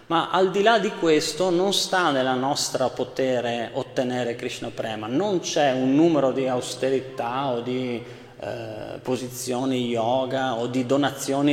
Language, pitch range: Italian, 120-160 Hz